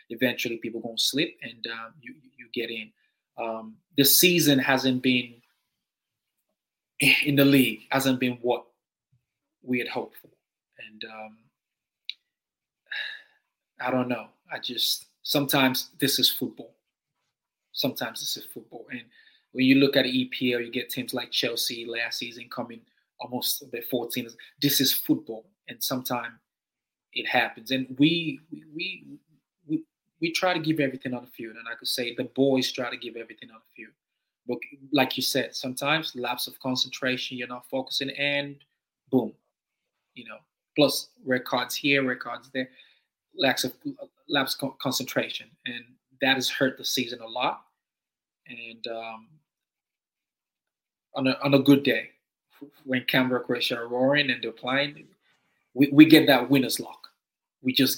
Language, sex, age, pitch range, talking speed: English, male, 20-39, 120-140 Hz, 150 wpm